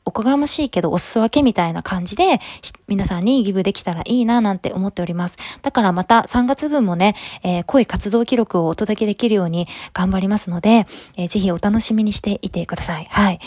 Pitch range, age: 185-255 Hz, 20-39